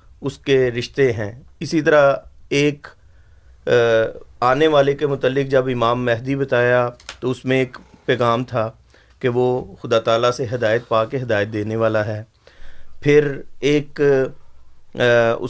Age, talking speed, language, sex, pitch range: 40-59, 135 wpm, Urdu, male, 110-125 Hz